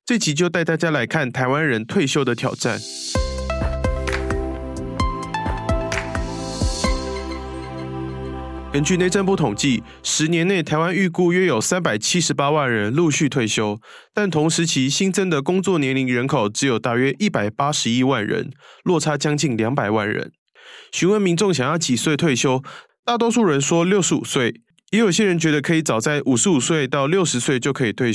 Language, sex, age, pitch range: Chinese, male, 20-39, 120-175 Hz